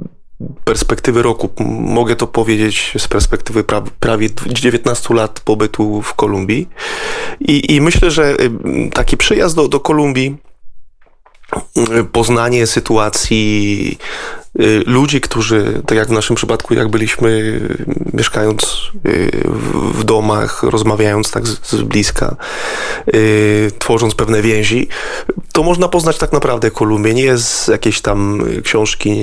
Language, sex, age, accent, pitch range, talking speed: Polish, male, 20-39, native, 110-120 Hz, 110 wpm